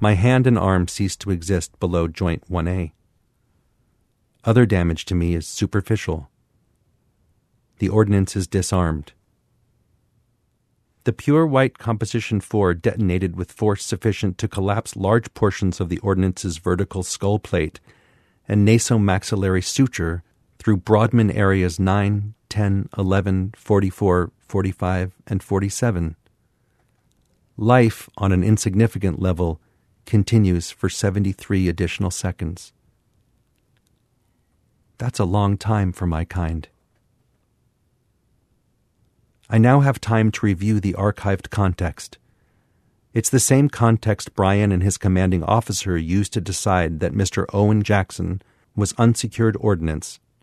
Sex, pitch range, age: male, 90-115 Hz, 40-59